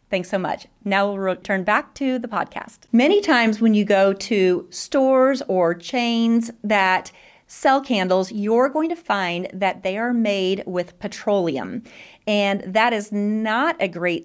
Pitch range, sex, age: 195-245 Hz, female, 30-49